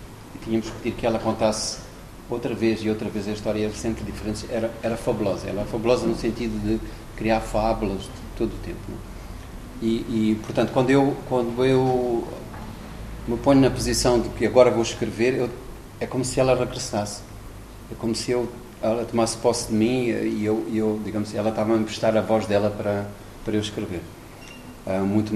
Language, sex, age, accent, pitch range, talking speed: Portuguese, male, 40-59, Portuguese, 105-125 Hz, 190 wpm